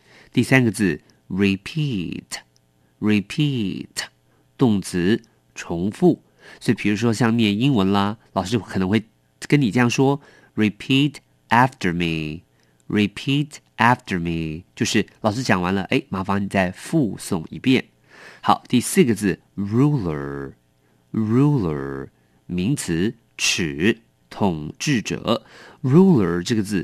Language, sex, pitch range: English, male, 75-120 Hz